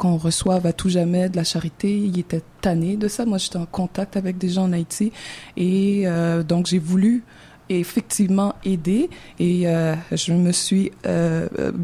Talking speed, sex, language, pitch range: 185 wpm, female, French, 175-215 Hz